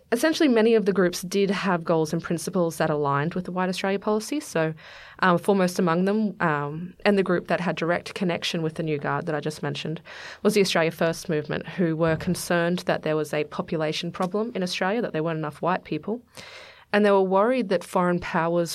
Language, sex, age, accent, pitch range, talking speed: English, female, 20-39, Australian, 160-195 Hz, 215 wpm